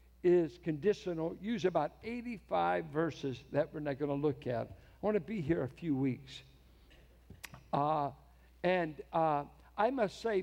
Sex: male